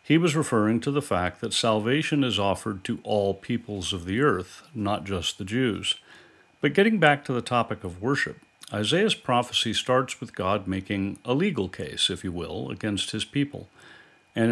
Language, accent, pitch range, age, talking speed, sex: English, American, 95-125 Hz, 50-69, 180 wpm, male